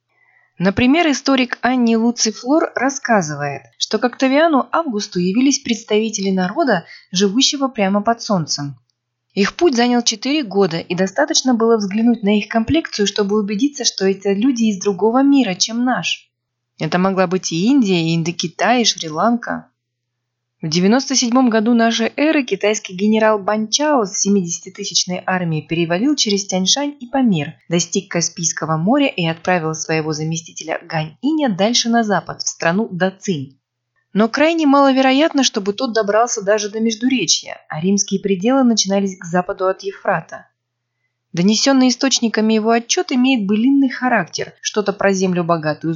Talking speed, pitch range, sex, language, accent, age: 140 wpm, 170-240 Hz, female, Russian, native, 20-39